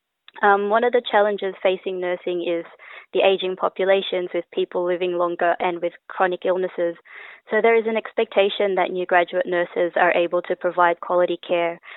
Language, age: English, 20-39